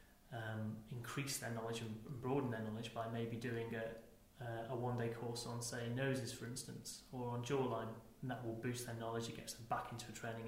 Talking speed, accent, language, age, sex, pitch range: 205 wpm, British, English, 30-49, male, 115-130 Hz